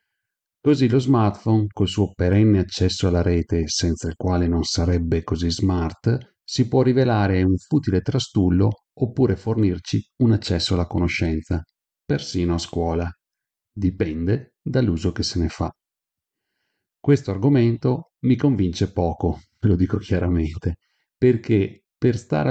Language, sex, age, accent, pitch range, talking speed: Italian, male, 40-59, native, 90-110 Hz, 130 wpm